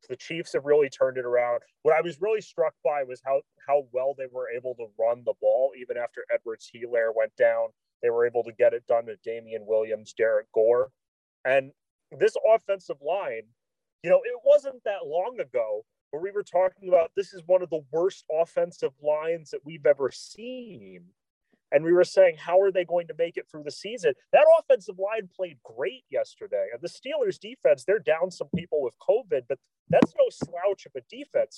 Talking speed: 200 wpm